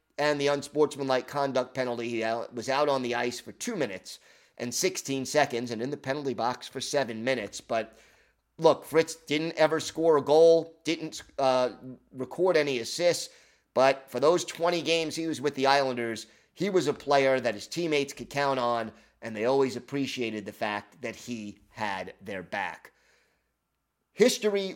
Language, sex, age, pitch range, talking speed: English, male, 30-49, 120-155 Hz, 170 wpm